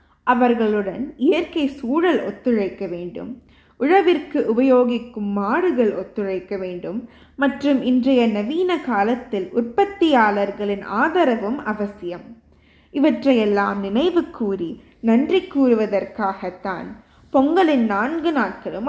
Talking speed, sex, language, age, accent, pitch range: 80 wpm, female, Tamil, 20-39, native, 205-295 Hz